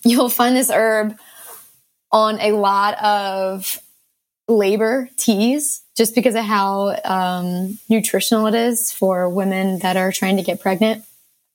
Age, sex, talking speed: 20-39, female, 135 wpm